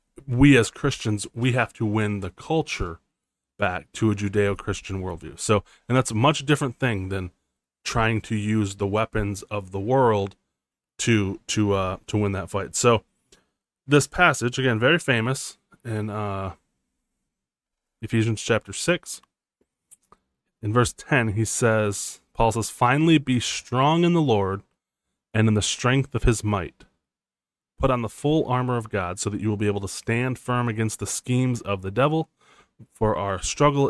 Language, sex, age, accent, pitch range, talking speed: English, male, 20-39, American, 105-130 Hz, 165 wpm